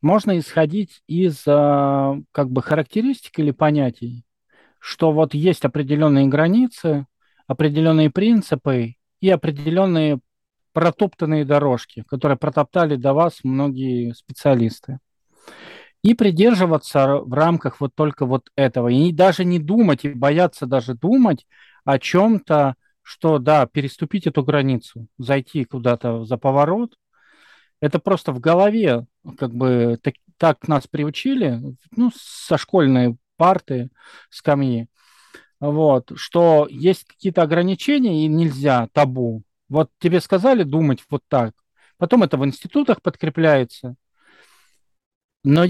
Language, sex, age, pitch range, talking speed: Russian, male, 40-59, 135-175 Hz, 115 wpm